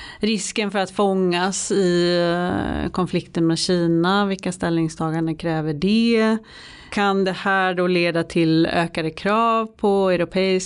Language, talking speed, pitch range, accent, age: Swedish, 125 wpm, 170-195 Hz, native, 30-49